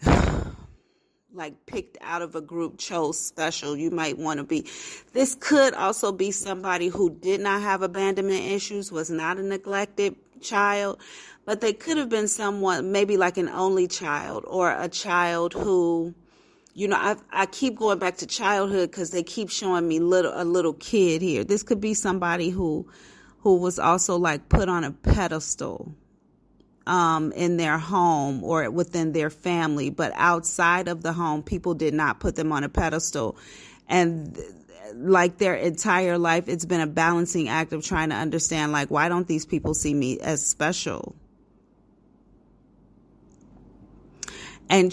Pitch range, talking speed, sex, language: 160-195 Hz, 165 wpm, female, English